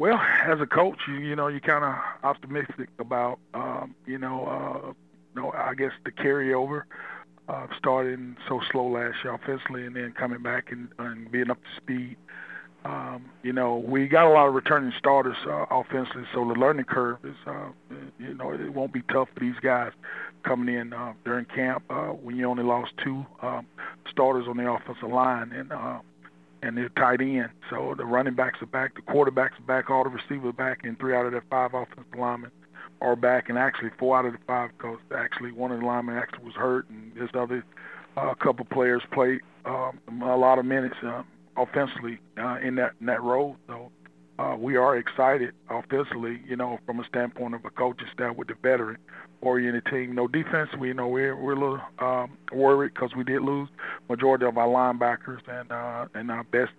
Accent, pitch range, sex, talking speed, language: American, 120-130 Hz, male, 210 wpm, English